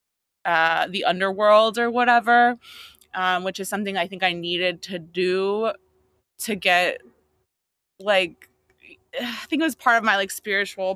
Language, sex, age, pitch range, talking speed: English, female, 20-39, 180-210 Hz, 150 wpm